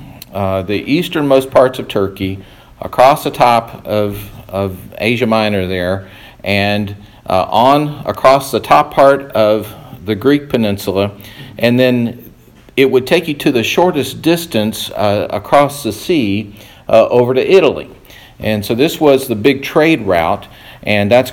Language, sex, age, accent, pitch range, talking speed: English, male, 50-69, American, 100-130 Hz, 150 wpm